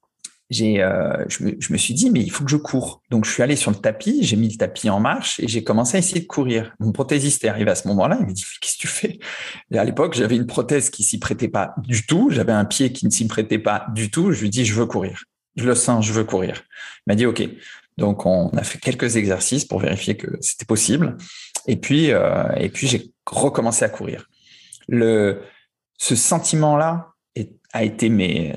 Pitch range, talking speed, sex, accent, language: 110-145 Hz, 240 wpm, male, French, French